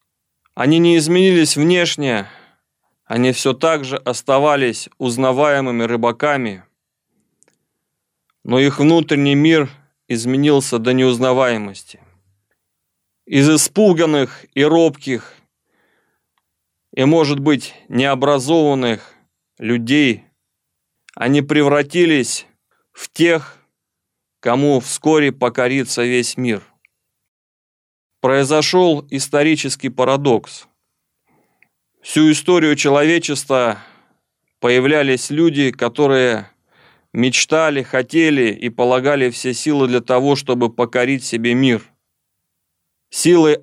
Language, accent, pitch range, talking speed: Russian, native, 120-150 Hz, 80 wpm